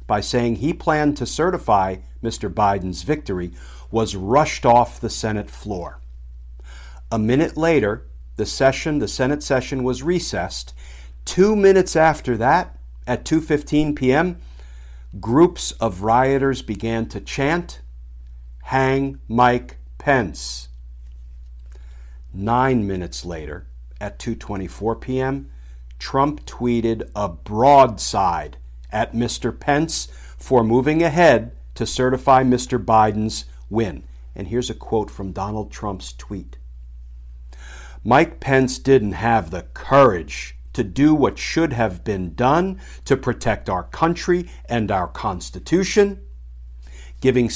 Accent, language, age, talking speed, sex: American, English, 50-69, 115 wpm, male